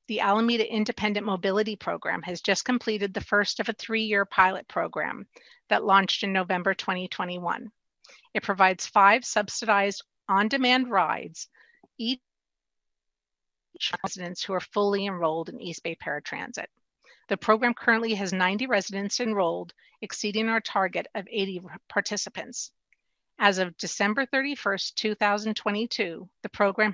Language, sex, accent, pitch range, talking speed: English, female, American, 185-225 Hz, 125 wpm